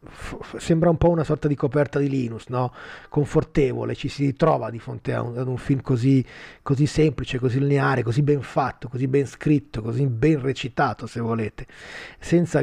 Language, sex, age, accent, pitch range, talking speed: Italian, male, 30-49, native, 120-150 Hz, 160 wpm